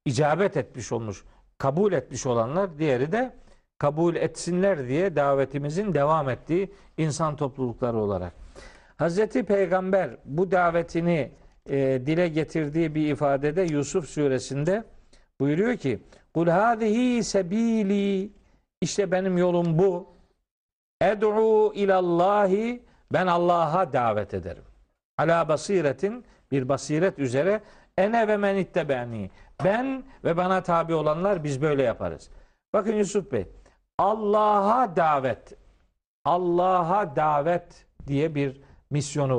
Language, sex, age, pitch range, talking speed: Turkish, male, 50-69, 140-200 Hz, 105 wpm